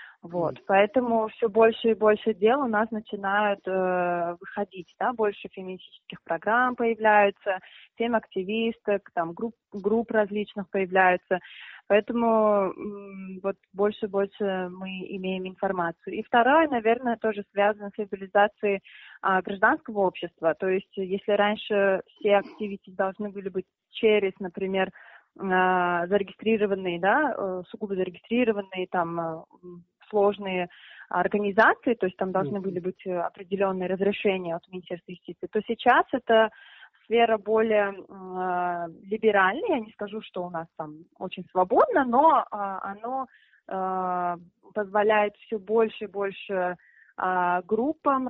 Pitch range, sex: 185-220 Hz, female